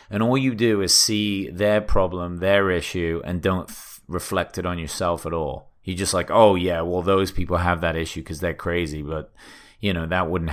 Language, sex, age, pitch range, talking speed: English, male, 30-49, 85-105 Hz, 210 wpm